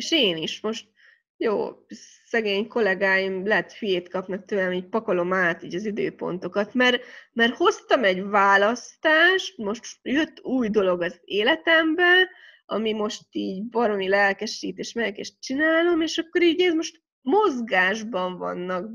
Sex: female